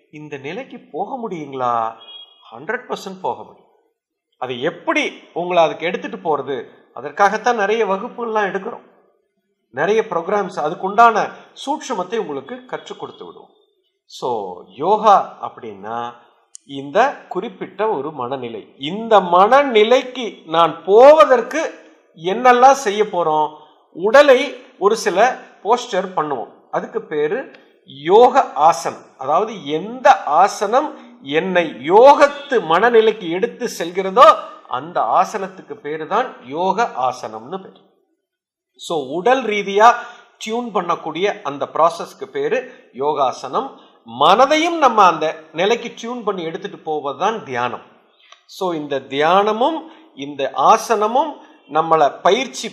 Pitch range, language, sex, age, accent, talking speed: 165-270 Hz, Tamil, male, 50-69, native, 95 wpm